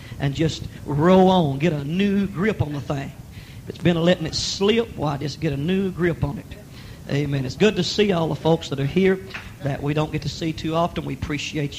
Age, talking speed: 50-69, 235 wpm